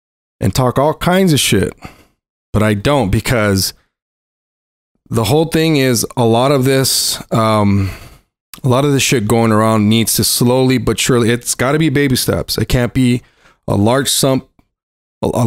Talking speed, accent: 160 wpm, American